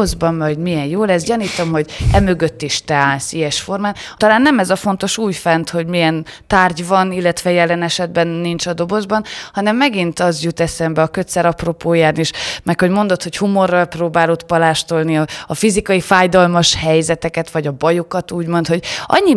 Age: 20-39